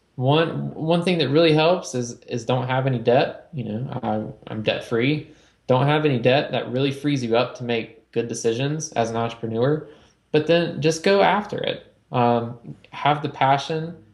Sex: male